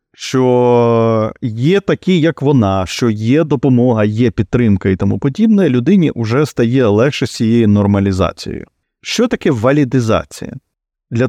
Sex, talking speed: male, 120 wpm